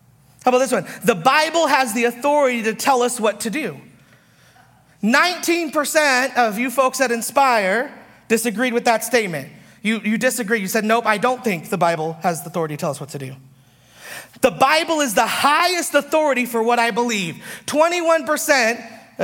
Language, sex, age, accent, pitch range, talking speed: English, male, 30-49, American, 230-315 Hz, 175 wpm